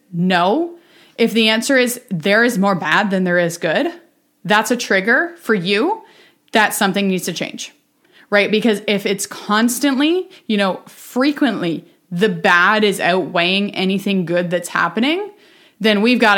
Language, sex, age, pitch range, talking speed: English, female, 20-39, 185-260 Hz, 155 wpm